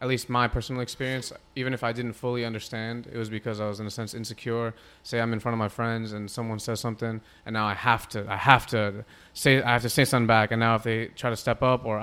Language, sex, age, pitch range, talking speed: English, male, 20-39, 110-135 Hz, 275 wpm